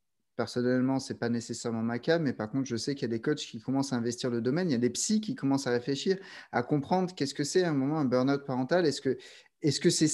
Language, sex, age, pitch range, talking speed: French, male, 30-49, 125-165 Hz, 285 wpm